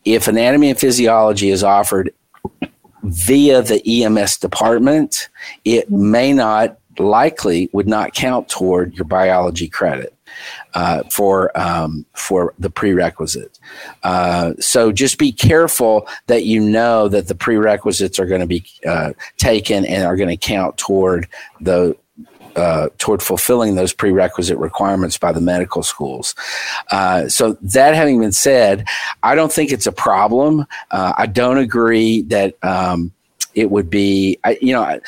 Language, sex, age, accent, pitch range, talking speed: English, male, 50-69, American, 95-120 Hz, 145 wpm